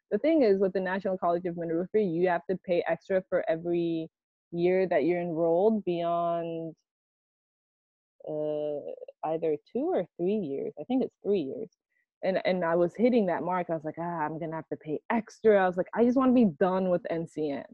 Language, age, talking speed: English, 20-39, 205 wpm